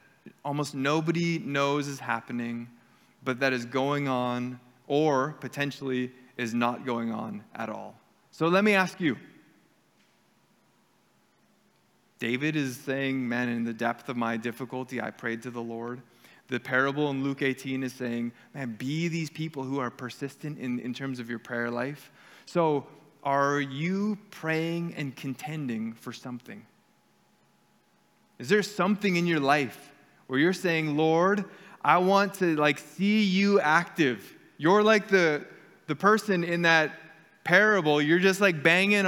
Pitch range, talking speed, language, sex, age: 130-175 Hz, 145 wpm, English, male, 20-39